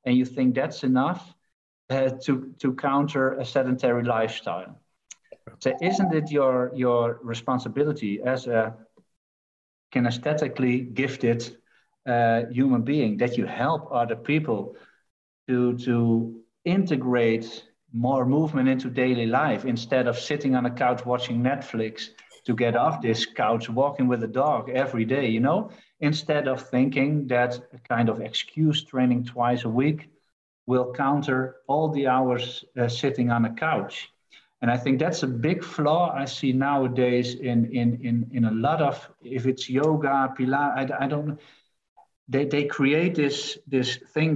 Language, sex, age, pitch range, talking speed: English, male, 50-69, 120-145 Hz, 150 wpm